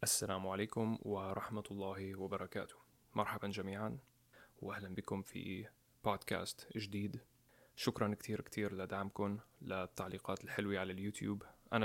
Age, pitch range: 20-39, 100-115 Hz